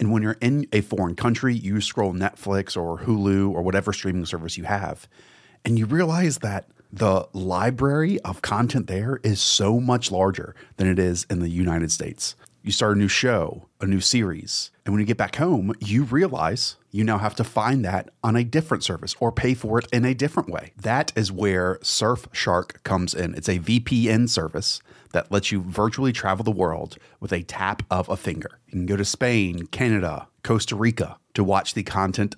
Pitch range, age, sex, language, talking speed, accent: 95-115 Hz, 30-49, male, English, 200 wpm, American